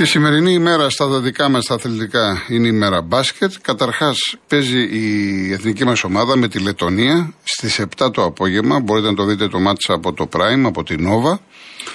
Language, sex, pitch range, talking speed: Greek, male, 110-160 Hz, 180 wpm